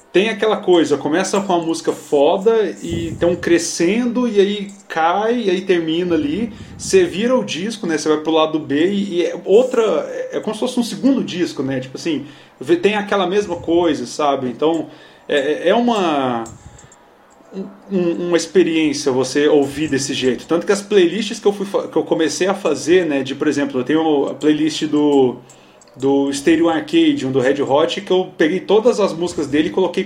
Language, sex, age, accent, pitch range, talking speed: Portuguese, male, 30-49, Brazilian, 150-195 Hz, 185 wpm